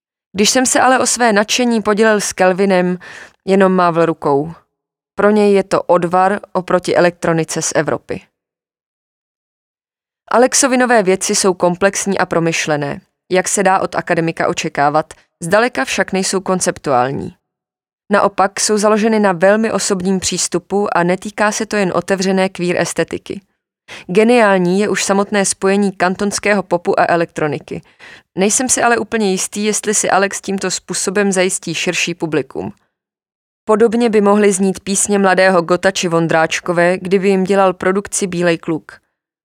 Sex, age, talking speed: female, 20-39, 135 wpm